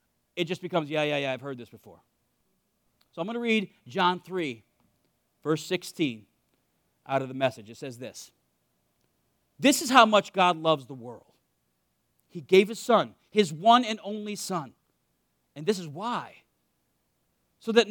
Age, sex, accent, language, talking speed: 40-59, male, American, English, 165 wpm